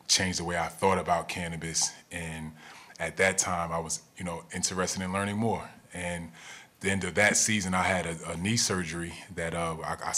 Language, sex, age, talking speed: English, male, 20-39, 200 wpm